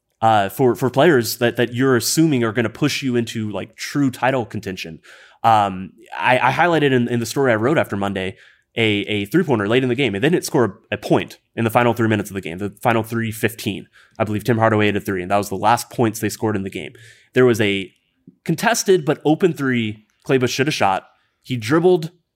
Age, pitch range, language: 20-39, 110-140 Hz, English